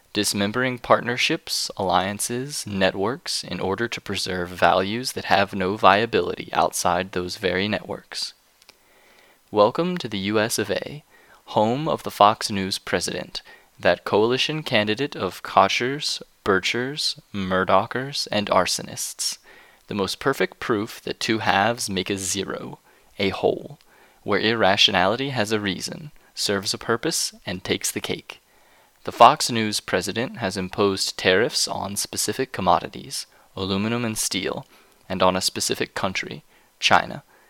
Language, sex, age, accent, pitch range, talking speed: English, male, 20-39, American, 95-120 Hz, 130 wpm